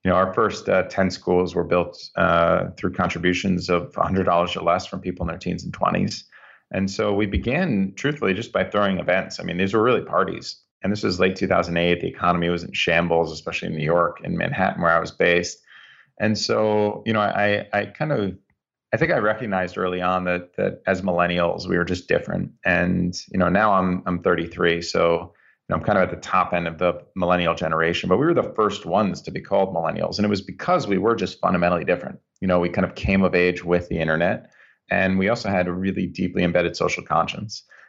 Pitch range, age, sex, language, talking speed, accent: 85-95 Hz, 30-49, male, English, 225 wpm, American